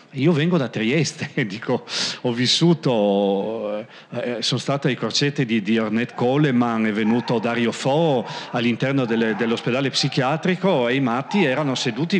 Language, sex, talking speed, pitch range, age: Italian, male, 140 wpm, 115-140 Hz, 40-59